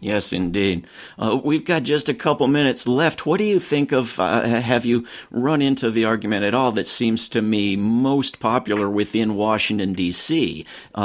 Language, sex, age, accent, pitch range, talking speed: English, male, 50-69, American, 95-120 Hz, 185 wpm